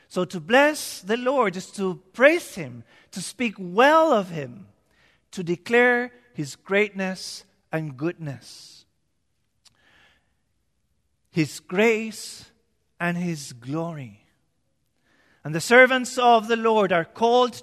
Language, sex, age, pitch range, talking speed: English, male, 40-59, 170-240 Hz, 110 wpm